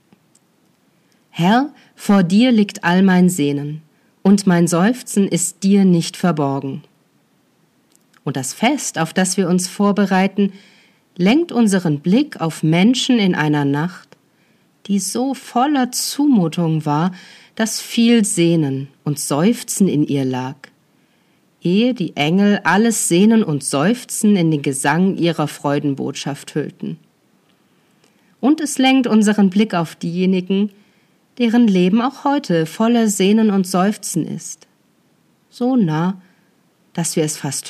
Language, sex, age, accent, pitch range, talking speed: German, female, 40-59, German, 160-215 Hz, 125 wpm